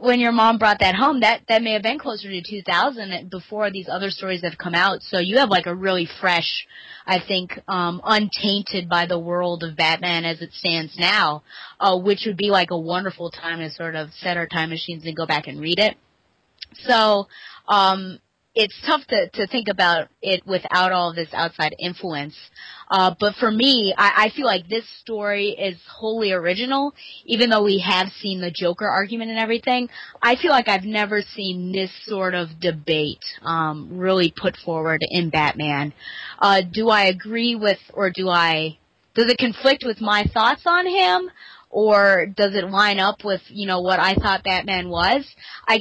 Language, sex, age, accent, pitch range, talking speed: English, female, 30-49, American, 180-220 Hz, 190 wpm